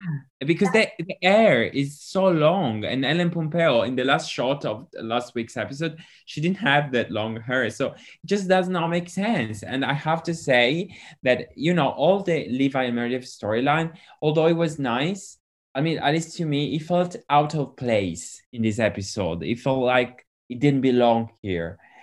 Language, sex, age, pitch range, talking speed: English, male, 20-39, 110-145 Hz, 190 wpm